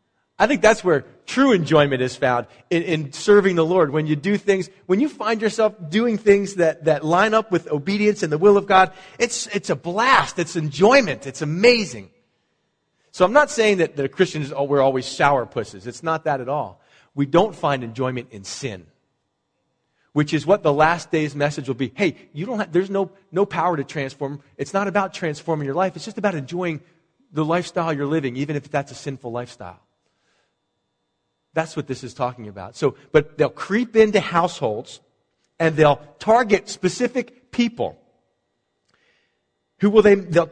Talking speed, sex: 185 wpm, male